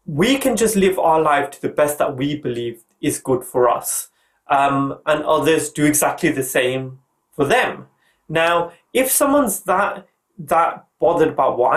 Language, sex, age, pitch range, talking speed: English, male, 30-49, 135-190 Hz, 170 wpm